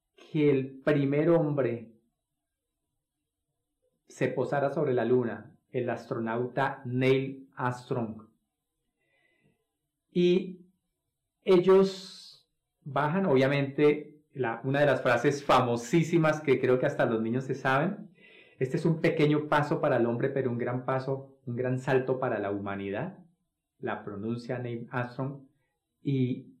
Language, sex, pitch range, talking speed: Spanish, male, 125-160 Hz, 120 wpm